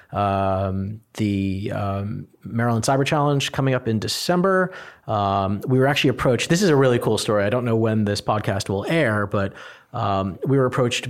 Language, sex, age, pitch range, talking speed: English, male, 30-49, 100-125 Hz, 185 wpm